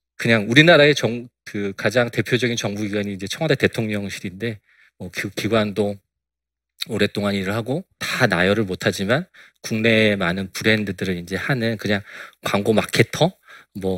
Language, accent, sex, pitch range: Korean, native, male, 100-135 Hz